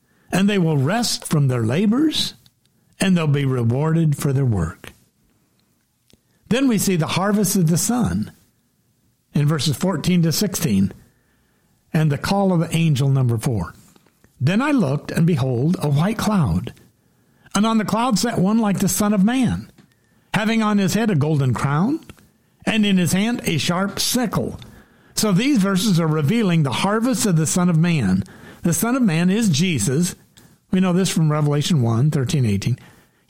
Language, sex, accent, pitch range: English, male, American, 145-200 Hz